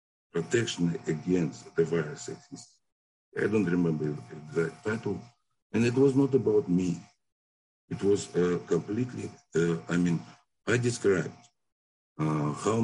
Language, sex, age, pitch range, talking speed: English, male, 60-79, 80-95 Hz, 125 wpm